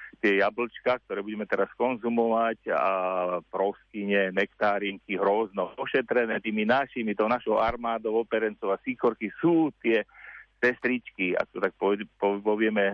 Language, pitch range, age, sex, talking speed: Slovak, 95-115 Hz, 40-59, male, 120 wpm